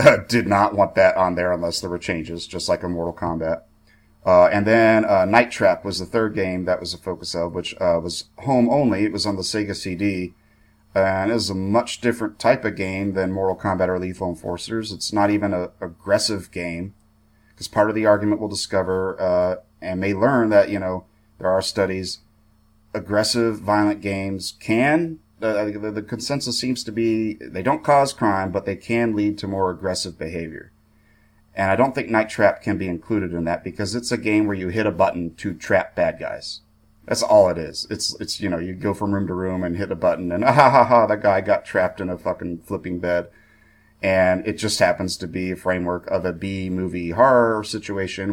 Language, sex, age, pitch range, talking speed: English, male, 30-49, 90-105 Hz, 215 wpm